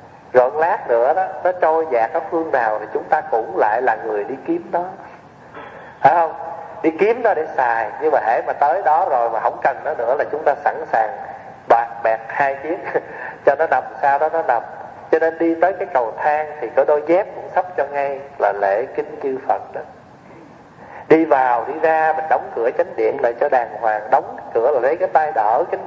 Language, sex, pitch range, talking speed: Vietnamese, male, 140-180 Hz, 225 wpm